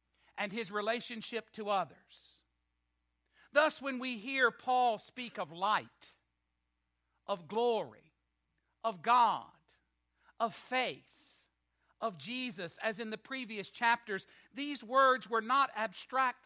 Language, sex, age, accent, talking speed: English, male, 60-79, American, 115 wpm